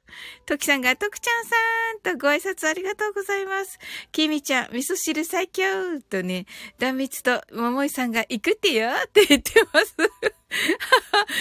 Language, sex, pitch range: Japanese, female, 245-380 Hz